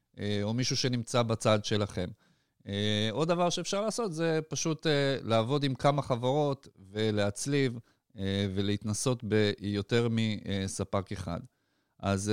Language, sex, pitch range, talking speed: Hebrew, male, 105-140 Hz, 100 wpm